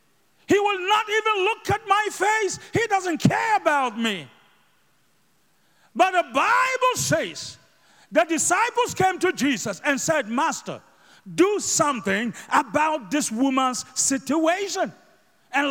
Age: 50-69